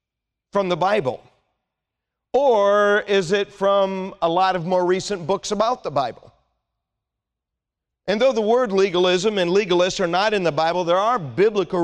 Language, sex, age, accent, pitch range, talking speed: English, male, 40-59, American, 155-200 Hz, 155 wpm